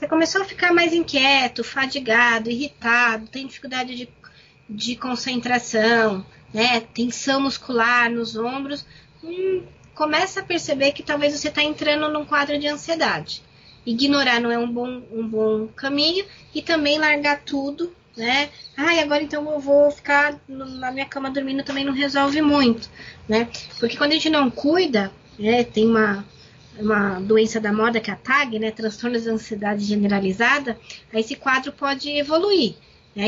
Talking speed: 155 wpm